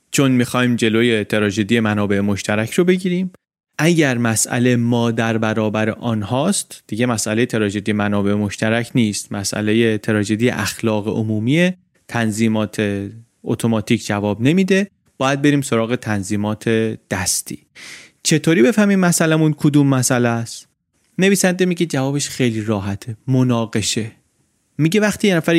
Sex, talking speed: male, 115 wpm